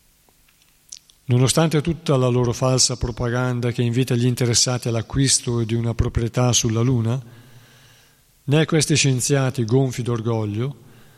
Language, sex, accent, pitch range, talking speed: Italian, male, native, 120-140 Hz, 115 wpm